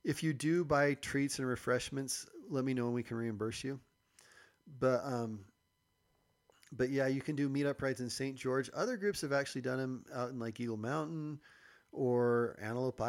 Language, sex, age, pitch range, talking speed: English, male, 40-59, 110-140 Hz, 185 wpm